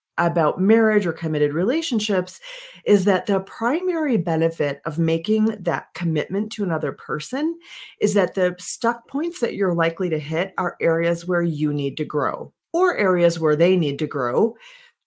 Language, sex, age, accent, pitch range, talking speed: English, female, 40-59, American, 165-230 Hz, 165 wpm